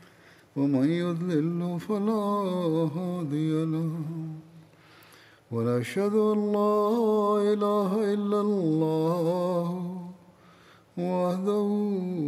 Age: 50-69